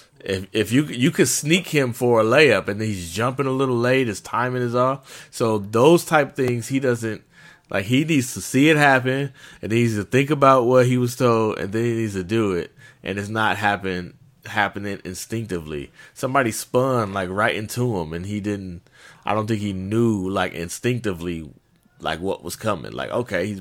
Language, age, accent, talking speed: English, 20-39, American, 205 wpm